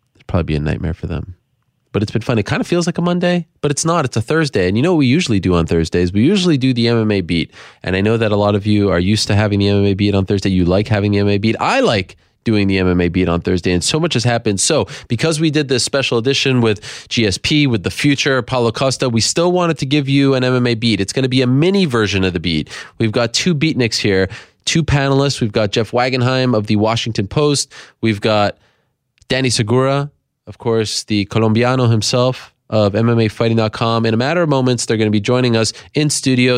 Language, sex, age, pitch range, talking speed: English, male, 20-39, 105-130 Hz, 240 wpm